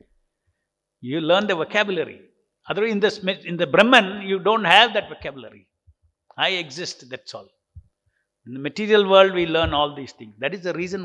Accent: Indian